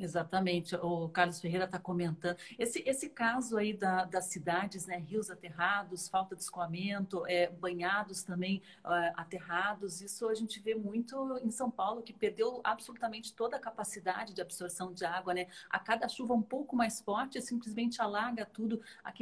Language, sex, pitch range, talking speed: Portuguese, female, 175-205 Hz, 160 wpm